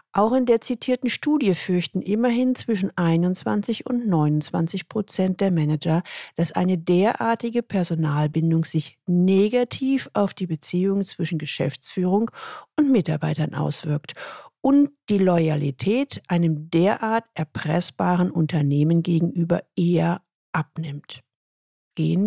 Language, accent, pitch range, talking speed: German, German, 165-230 Hz, 105 wpm